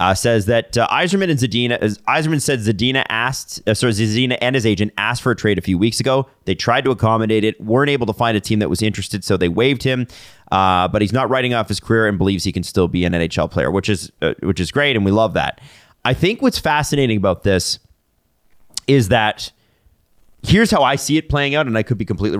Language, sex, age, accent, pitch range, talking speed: English, male, 30-49, American, 105-130 Hz, 240 wpm